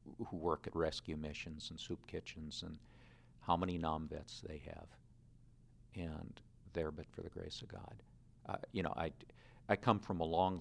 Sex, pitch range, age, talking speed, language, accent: male, 80-115 Hz, 50-69, 180 wpm, English, American